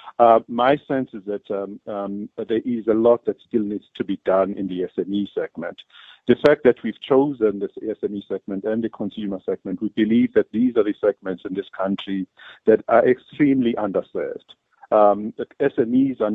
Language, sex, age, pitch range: English, male, 50-69, 105-125 Hz